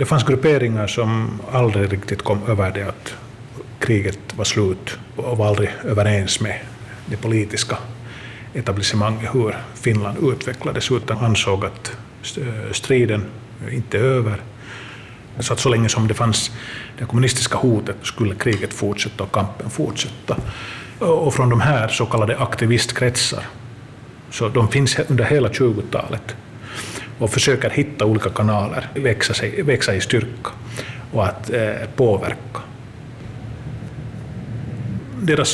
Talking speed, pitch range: 120 wpm, 110-125 Hz